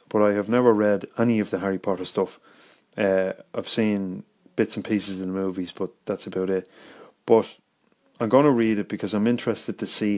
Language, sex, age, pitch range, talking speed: English, male, 30-49, 100-115 Hz, 205 wpm